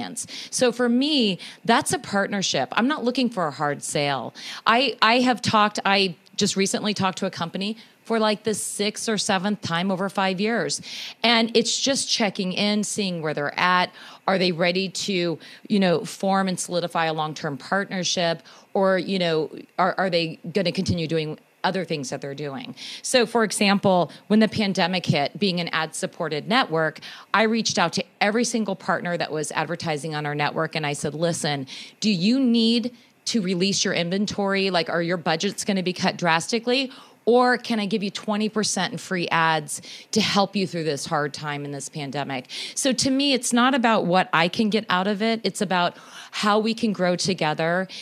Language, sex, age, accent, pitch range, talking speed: English, female, 40-59, American, 165-215 Hz, 190 wpm